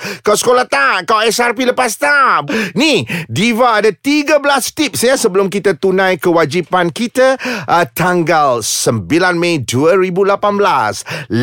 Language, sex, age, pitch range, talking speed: Malay, male, 30-49, 195-255 Hz, 120 wpm